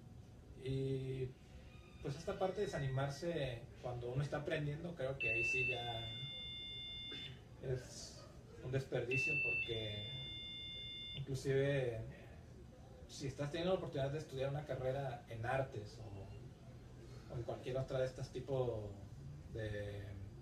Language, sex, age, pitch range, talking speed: Spanish, male, 30-49, 115-130 Hz, 115 wpm